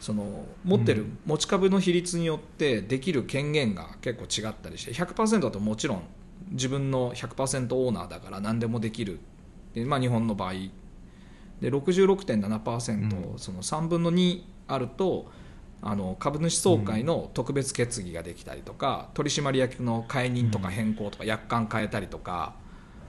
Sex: male